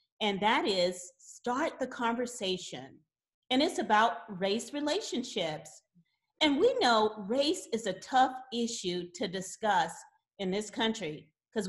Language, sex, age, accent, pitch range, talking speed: English, female, 40-59, American, 185-250 Hz, 130 wpm